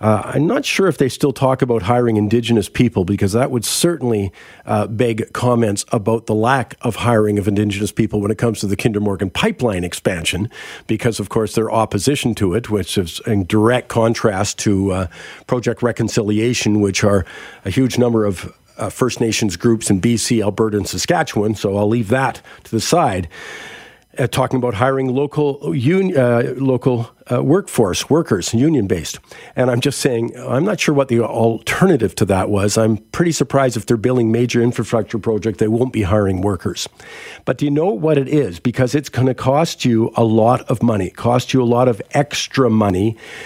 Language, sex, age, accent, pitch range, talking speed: English, male, 50-69, American, 110-130 Hz, 190 wpm